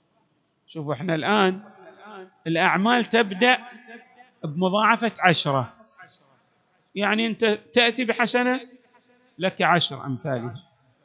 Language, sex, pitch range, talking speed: Arabic, male, 160-230 Hz, 75 wpm